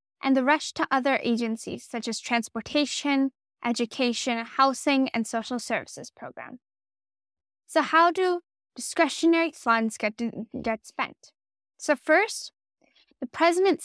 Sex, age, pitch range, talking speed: female, 10-29, 230-305 Hz, 115 wpm